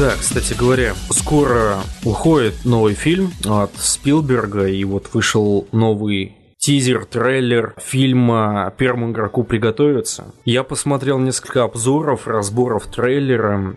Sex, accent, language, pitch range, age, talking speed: male, native, Russian, 100-125 Hz, 20-39, 105 wpm